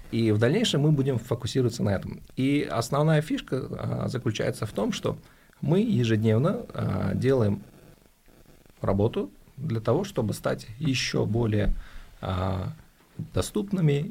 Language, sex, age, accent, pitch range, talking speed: Russian, male, 30-49, native, 105-145 Hz, 110 wpm